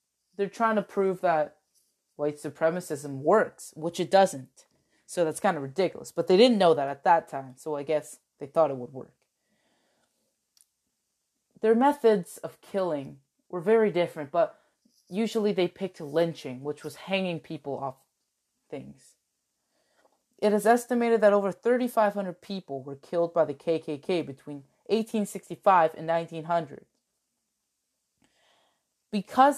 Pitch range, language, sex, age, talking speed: 155-210 Hz, English, female, 20-39, 140 wpm